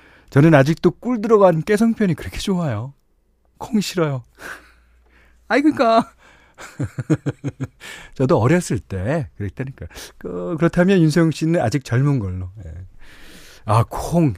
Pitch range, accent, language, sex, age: 100-160 Hz, native, Korean, male, 40-59